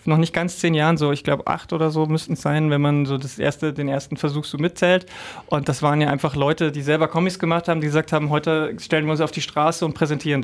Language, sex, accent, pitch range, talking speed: German, male, German, 145-165 Hz, 270 wpm